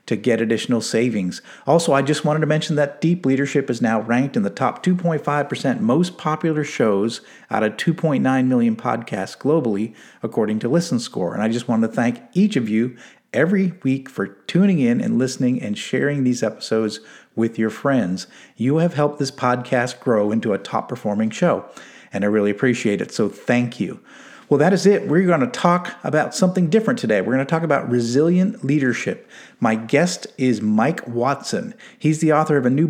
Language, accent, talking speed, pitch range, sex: English, American, 190 wpm, 115-160 Hz, male